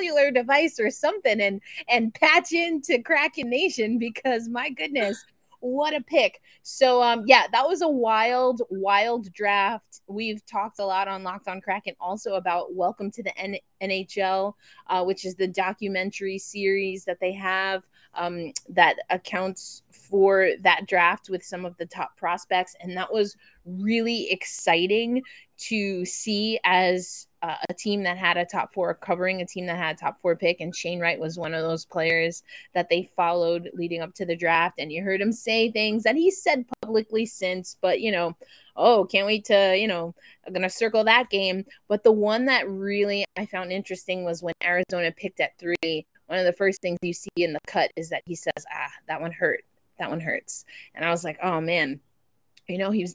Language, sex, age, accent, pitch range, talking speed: English, female, 20-39, American, 180-225 Hz, 190 wpm